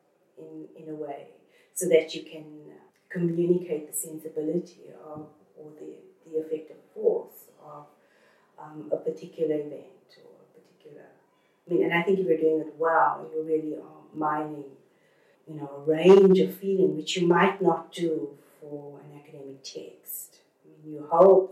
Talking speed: 155 wpm